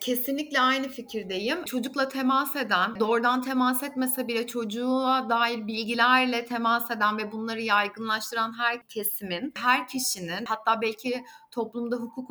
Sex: female